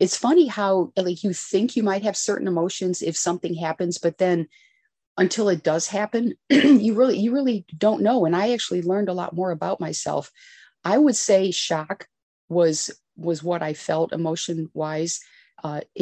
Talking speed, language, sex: 170 wpm, English, female